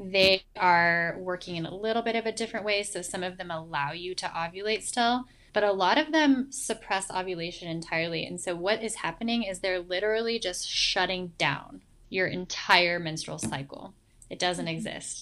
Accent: American